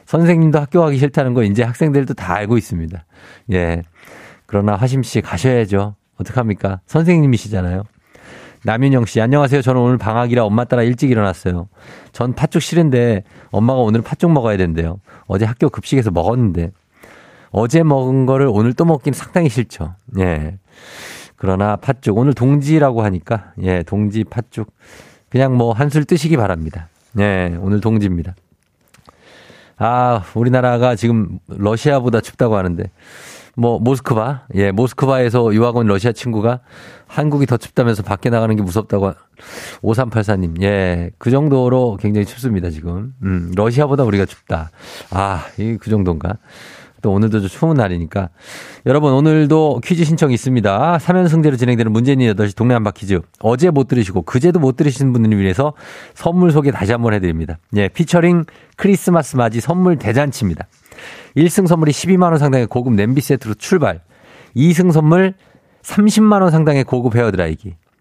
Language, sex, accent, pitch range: Korean, male, native, 100-145 Hz